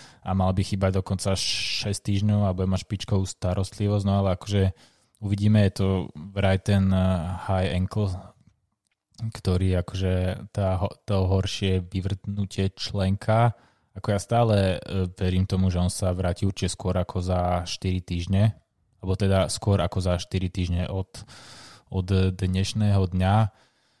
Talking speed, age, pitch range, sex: 140 wpm, 20-39, 95-105 Hz, male